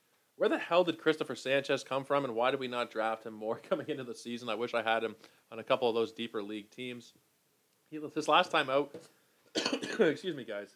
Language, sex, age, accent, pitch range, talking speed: English, male, 20-39, American, 115-145 Hz, 190 wpm